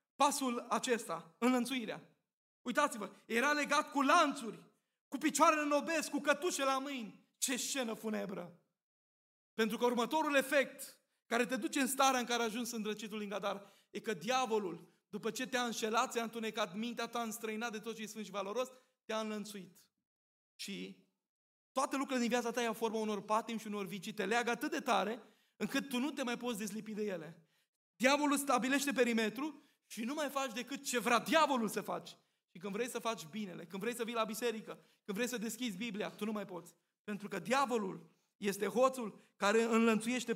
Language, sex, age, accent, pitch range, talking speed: Romanian, male, 20-39, native, 215-295 Hz, 180 wpm